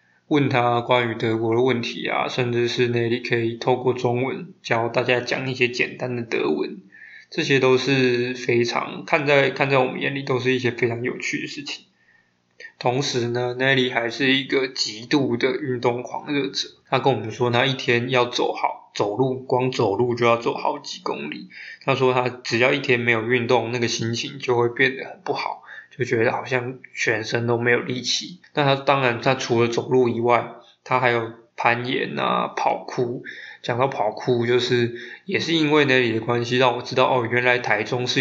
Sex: male